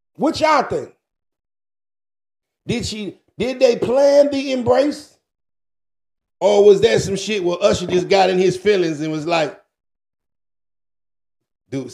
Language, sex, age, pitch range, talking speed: English, male, 50-69, 200-305 Hz, 130 wpm